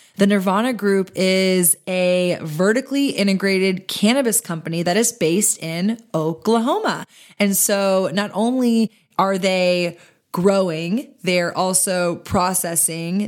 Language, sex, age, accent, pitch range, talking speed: English, female, 20-39, American, 170-205 Hz, 110 wpm